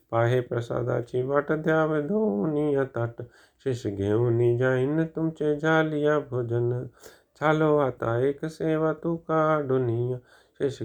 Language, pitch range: Hindi, 120-140 Hz